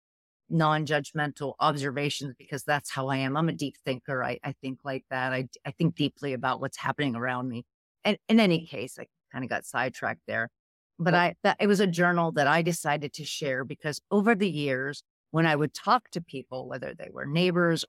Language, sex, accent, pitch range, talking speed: English, female, American, 135-175 Hz, 210 wpm